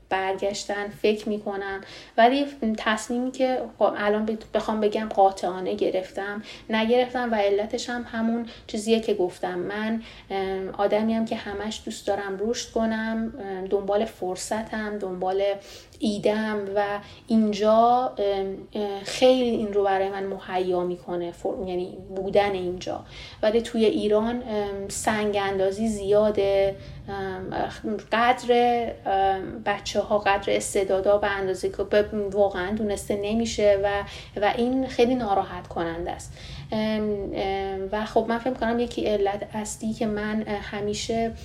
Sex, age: female, 30-49